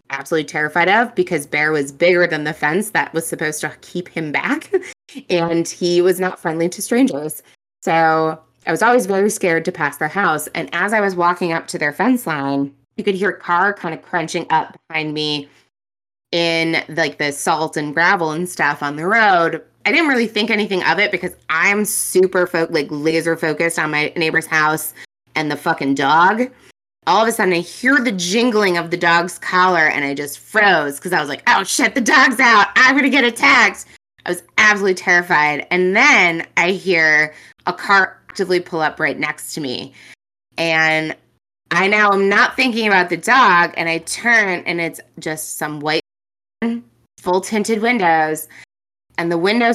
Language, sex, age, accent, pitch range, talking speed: English, female, 20-39, American, 155-195 Hz, 190 wpm